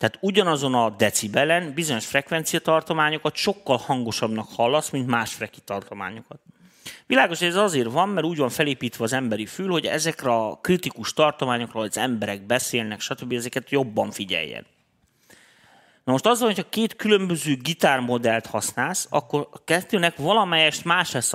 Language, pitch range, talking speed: Hungarian, 115-160 Hz, 150 wpm